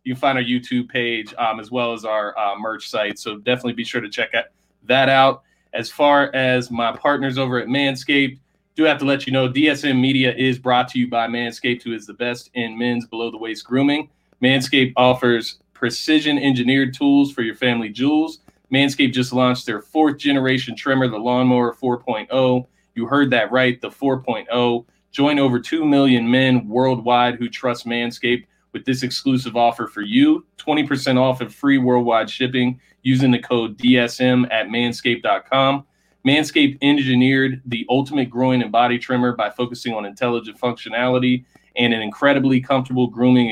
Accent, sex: American, male